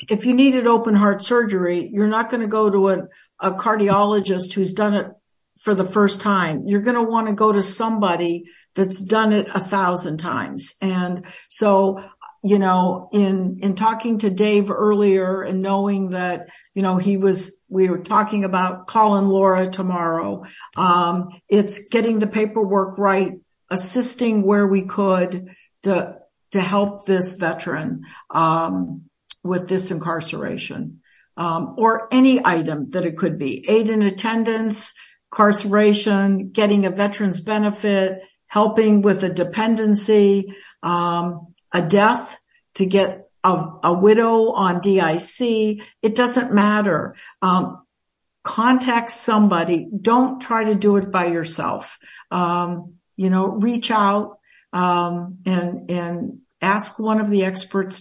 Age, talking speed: 60-79, 140 wpm